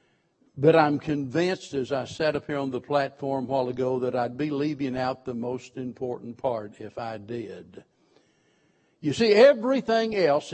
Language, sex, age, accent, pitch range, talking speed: English, male, 60-79, American, 125-150 Hz, 170 wpm